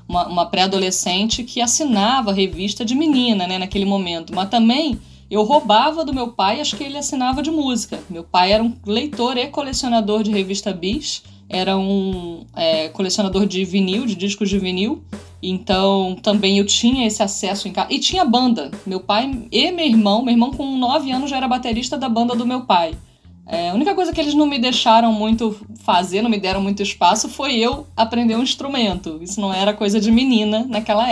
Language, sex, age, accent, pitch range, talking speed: Portuguese, female, 20-39, Brazilian, 185-230 Hz, 190 wpm